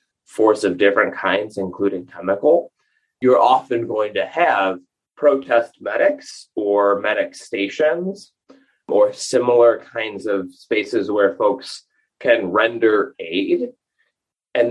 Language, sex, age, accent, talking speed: English, male, 20-39, American, 110 wpm